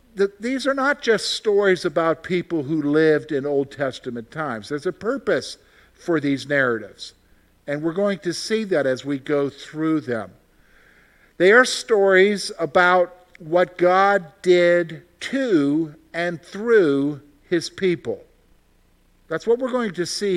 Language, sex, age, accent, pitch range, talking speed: English, male, 50-69, American, 150-200 Hz, 140 wpm